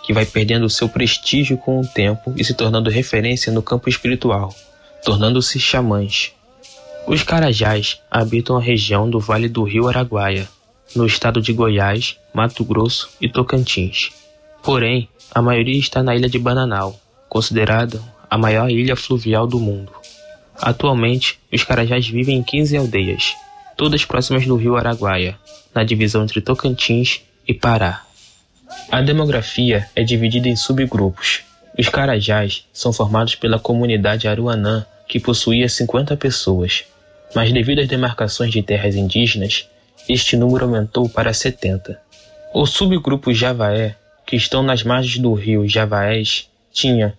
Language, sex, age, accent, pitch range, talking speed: Portuguese, male, 10-29, Brazilian, 110-130 Hz, 135 wpm